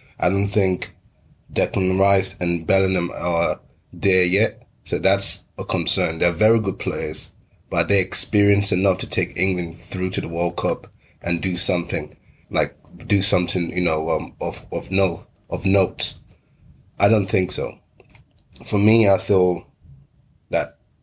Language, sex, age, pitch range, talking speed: English, male, 30-49, 90-105 Hz, 150 wpm